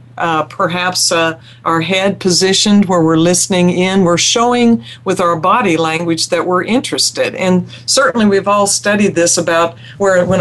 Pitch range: 160-195 Hz